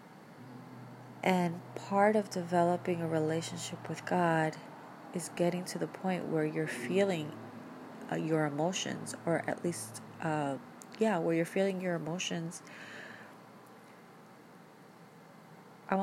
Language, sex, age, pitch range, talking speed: English, female, 30-49, 160-195 Hz, 110 wpm